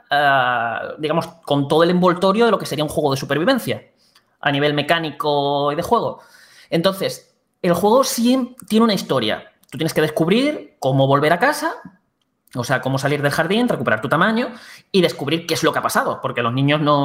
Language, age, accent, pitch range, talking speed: Spanish, 20-39, Spanish, 140-200 Hz, 195 wpm